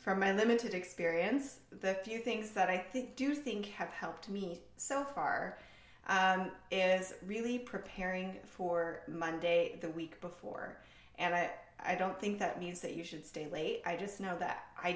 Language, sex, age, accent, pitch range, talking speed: English, female, 20-39, American, 170-215 Hz, 170 wpm